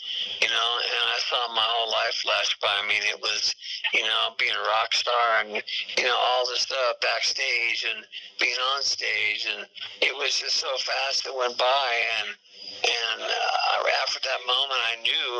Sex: male